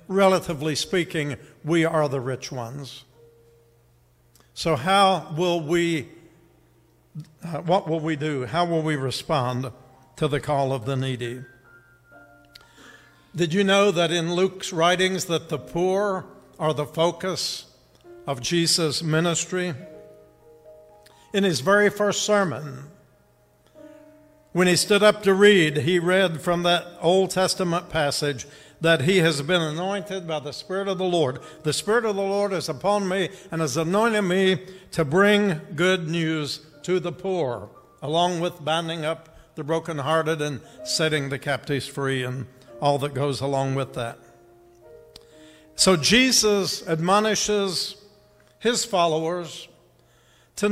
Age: 60-79